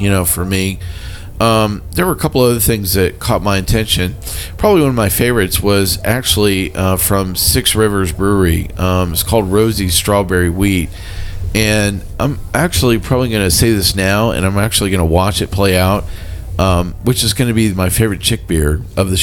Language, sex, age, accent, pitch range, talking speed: English, male, 40-59, American, 90-105 Hz, 195 wpm